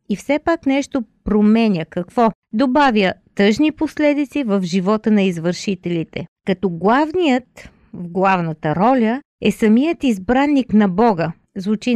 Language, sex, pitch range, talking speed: Bulgarian, female, 180-245 Hz, 120 wpm